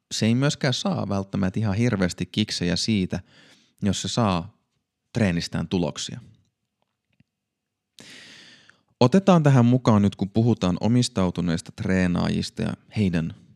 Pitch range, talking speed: 90-120 Hz, 100 wpm